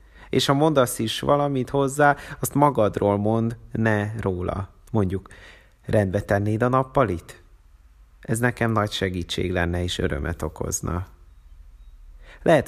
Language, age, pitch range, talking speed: Hungarian, 30-49, 85-110 Hz, 120 wpm